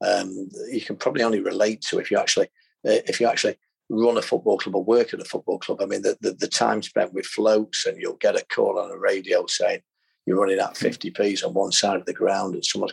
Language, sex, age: English, male, 40-59